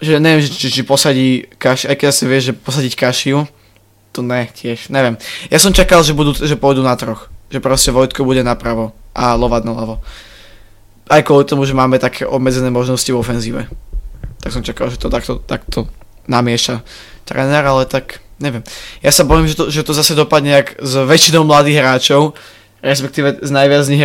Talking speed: 185 wpm